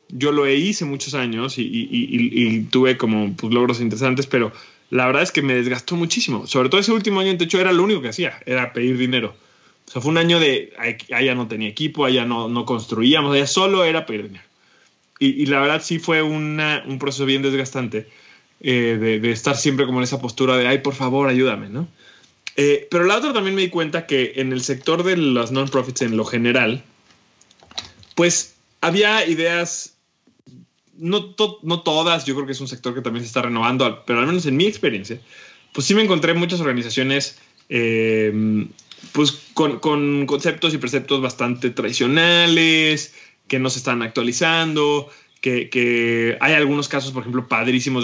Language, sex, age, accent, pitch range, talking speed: Spanish, male, 20-39, Mexican, 120-160 Hz, 190 wpm